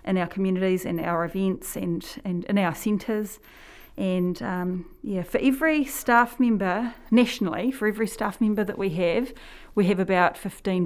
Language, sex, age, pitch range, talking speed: English, female, 30-49, 185-260 Hz, 165 wpm